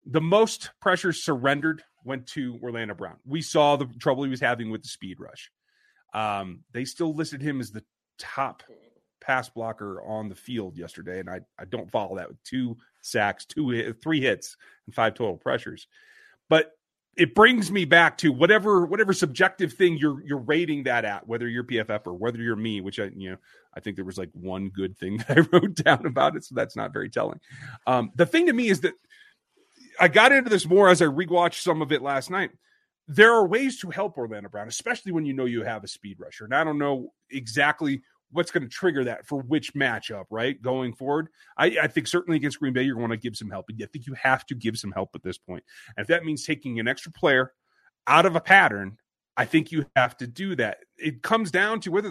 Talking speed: 225 wpm